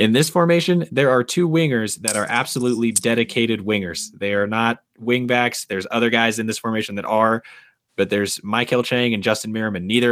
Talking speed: 195 wpm